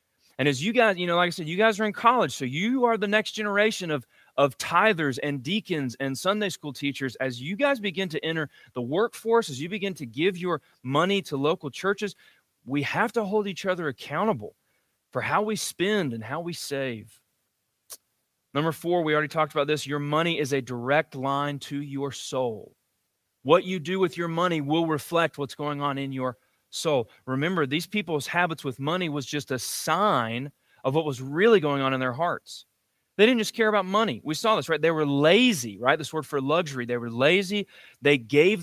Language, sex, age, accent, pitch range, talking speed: English, male, 30-49, American, 140-195 Hz, 210 wpm